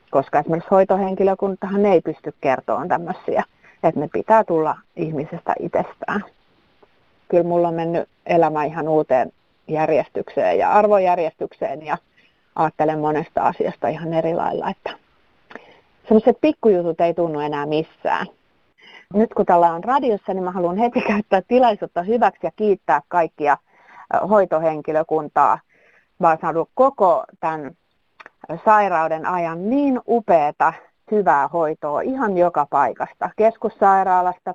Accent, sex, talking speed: native, female, 115 wpm